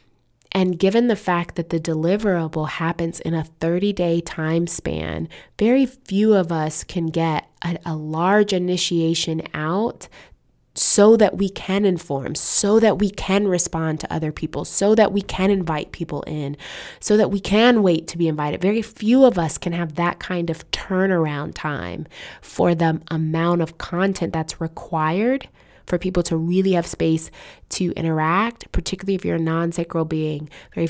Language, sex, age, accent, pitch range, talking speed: English, female, 20-39, American, 155-190 Hz, 165 wpm